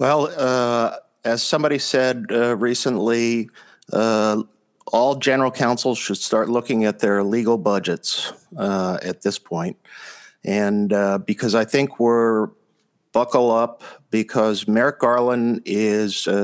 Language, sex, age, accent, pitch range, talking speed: English, male, 50-69, American, 100-115 Hz, 125 wpm